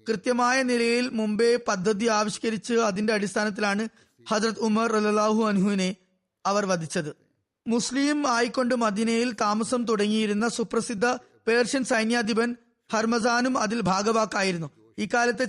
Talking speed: 95 wpm